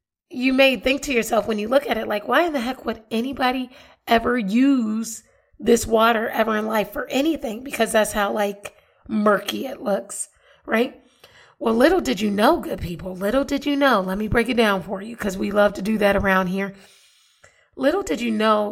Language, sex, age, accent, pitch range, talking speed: English, female, 30-49, American, 205-250 Hz, 205 wpm